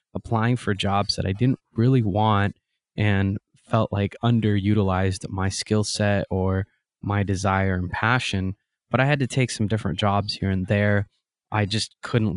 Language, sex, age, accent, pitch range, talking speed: English, male, 20-39, American, 95-110 Hz, 165 wpm